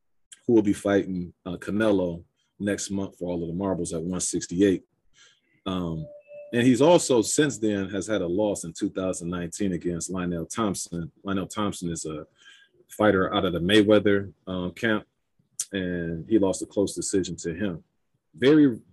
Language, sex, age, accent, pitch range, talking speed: English, male, 30-49, American, 90-110 Hz, 160 wpm